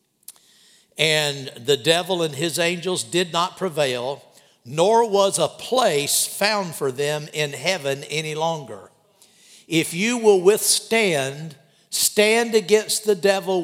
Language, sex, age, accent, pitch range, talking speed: English, male, 60-79, American, 150-200 Hz, 125 wpm